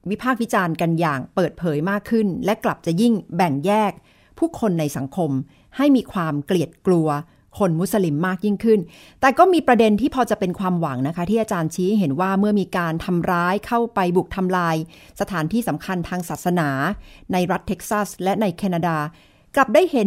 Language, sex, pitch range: Thai, female, 165-215 Hz